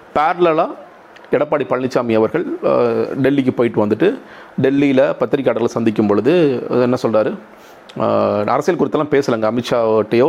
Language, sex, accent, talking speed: Tamil, male, native, 100 wpm